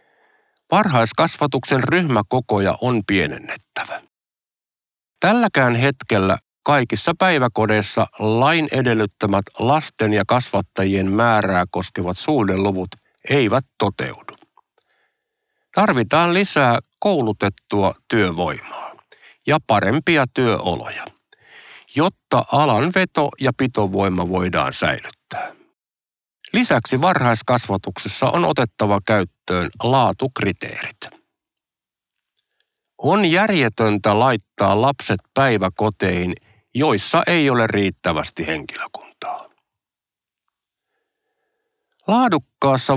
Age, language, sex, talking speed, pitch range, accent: 50-69, Finnish, male, 70 wpm, 100-150 Hz, native